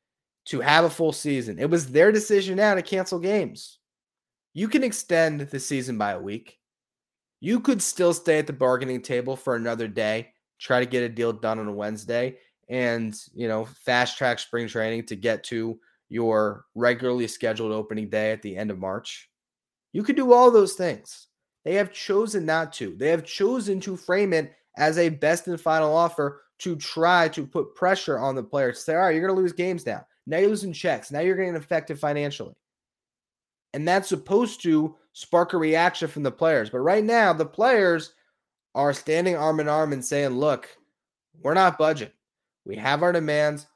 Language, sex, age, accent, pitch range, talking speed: English, male, 20-39, American, 125-175 Hz, 190 wpm